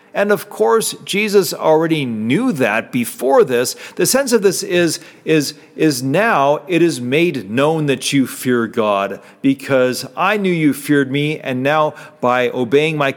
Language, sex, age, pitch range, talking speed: English, male, 40-59, 130-185 Hz, 165 wpm